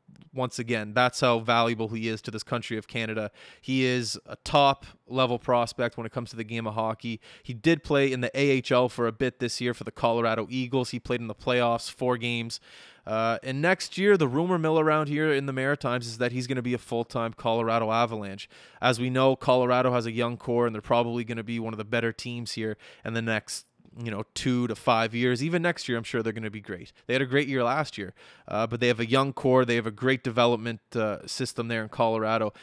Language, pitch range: English, 110-125 Hz